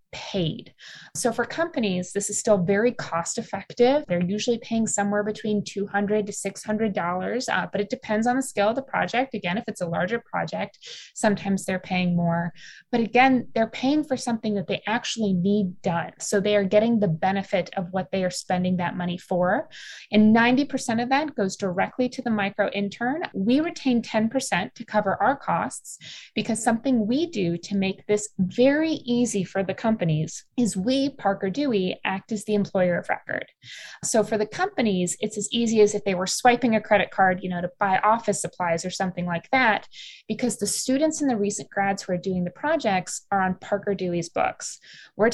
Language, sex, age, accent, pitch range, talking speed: English, female, 20-39, American, 190-240 Hz, 190 wpm